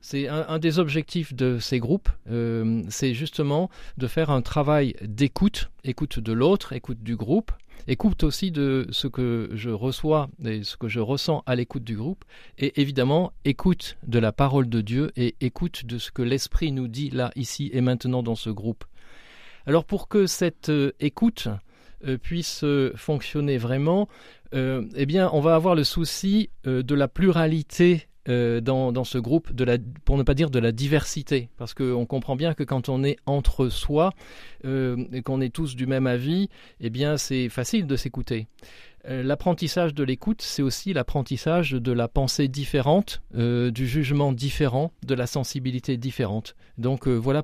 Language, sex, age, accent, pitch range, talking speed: French, male, 40-59, French, 125-155 Hz, 175 wpm